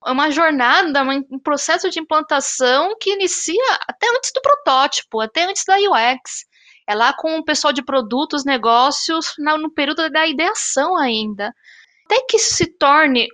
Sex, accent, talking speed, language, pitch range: female, Brazilian, 160 wpm, Portuguese, 240-310 Hz